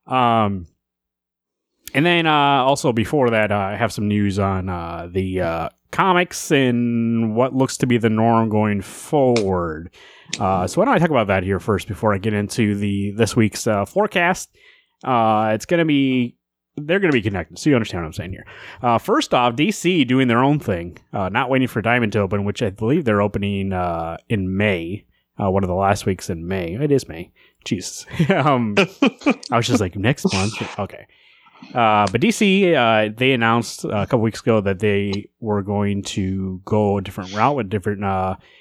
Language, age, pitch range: English, 30-49, 100-135 Hz